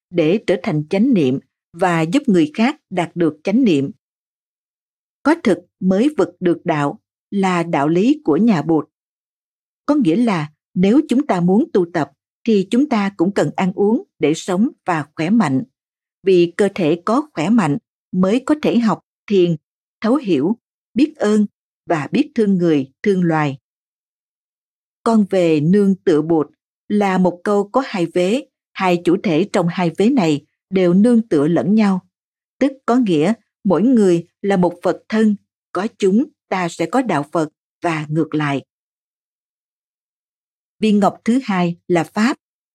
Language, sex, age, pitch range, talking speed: Vietnamese, female, 50-69, 170-235 Hz, 160 wpm